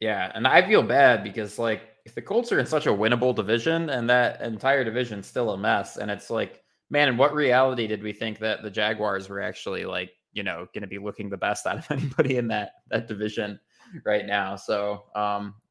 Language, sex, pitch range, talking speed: English, male, 100-120 Hz, 225 wpm